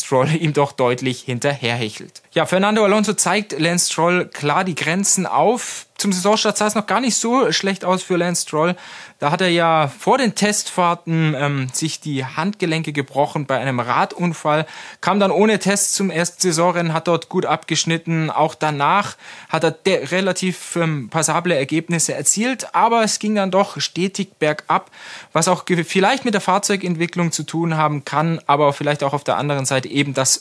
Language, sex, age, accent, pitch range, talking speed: German, male, 20-39, German, 145-185 Hz, 180 wpm